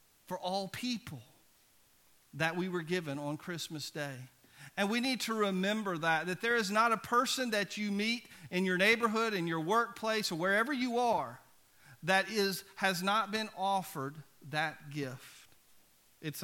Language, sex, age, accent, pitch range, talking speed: English, male, 50-69, American, 165-210 Hz, 160 wpm